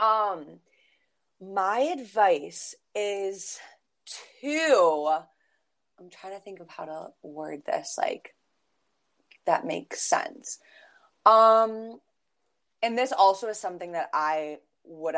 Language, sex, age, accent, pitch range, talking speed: English, female, 20-39, American, 175-235 Hz, 105 wpm